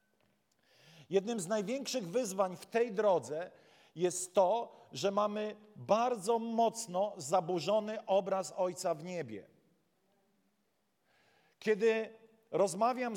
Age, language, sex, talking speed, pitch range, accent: 50-69, Polish, male, 90 wpm, 180-220 Hz, native